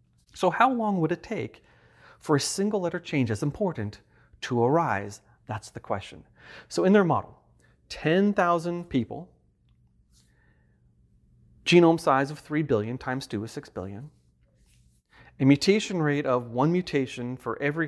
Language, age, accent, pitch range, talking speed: English, 30-49, American, 105-150 Hz, 140 wpm